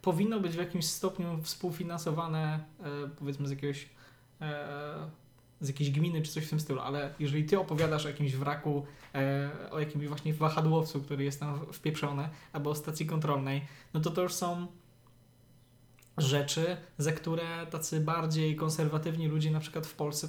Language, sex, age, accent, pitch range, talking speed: Polish, male, 20-39, native, 145-185 Hz, 150 wpm